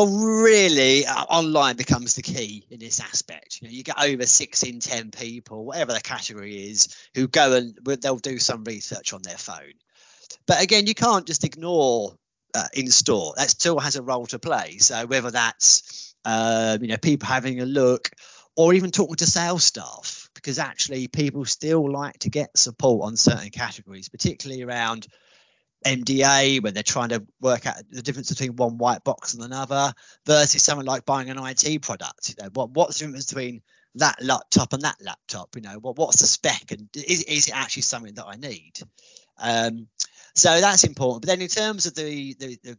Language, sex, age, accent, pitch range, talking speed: English, male, 30-49, British, 115-145 Hz, 195 wpm